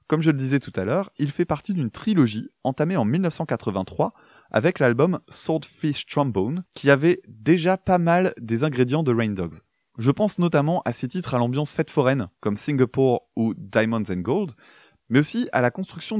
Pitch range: 115-165 Hz